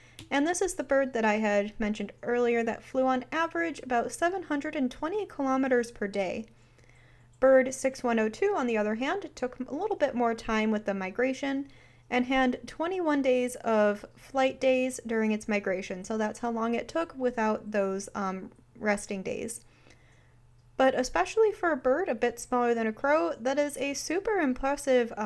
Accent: American